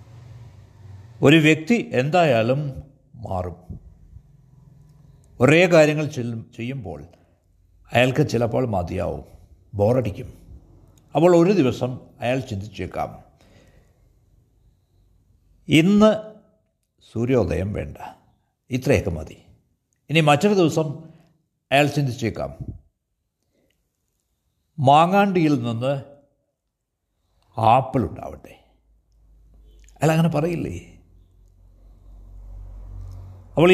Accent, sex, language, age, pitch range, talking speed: native, male, Malayalam, 60-79, 95-145 Hz, 60 wpm